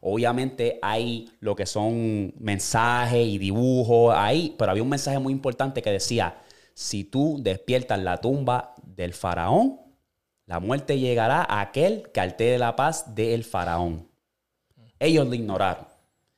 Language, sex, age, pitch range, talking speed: Spanish, male, 20-39, 105-130 Hz, 140 wpm